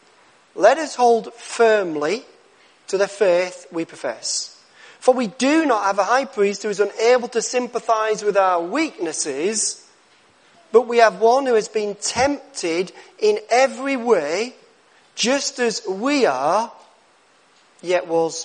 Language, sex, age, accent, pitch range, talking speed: English, male, 40-59, British, 175-255 Hz, 135 wpm